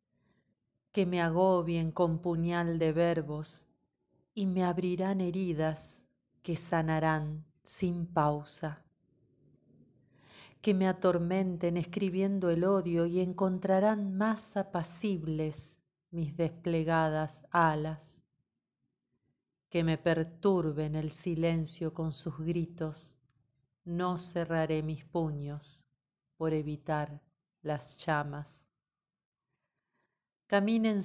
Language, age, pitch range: Spanish, 40-59, 155-180 Hz